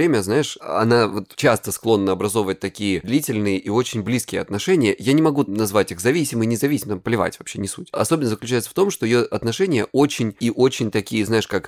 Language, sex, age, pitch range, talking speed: Russian, male, 20-39, 100-130 Hz, 185 wpm